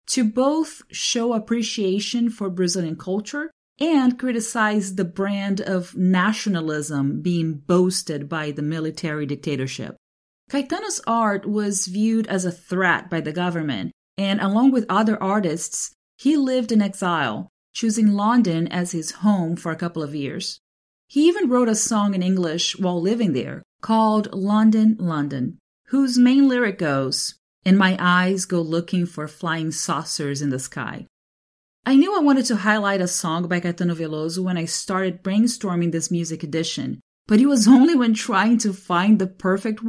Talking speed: 155 wpm